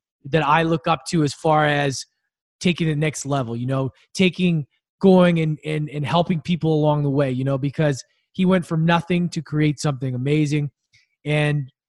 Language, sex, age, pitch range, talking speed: English, male, 20-39, 145-185 Hz, 180 wpm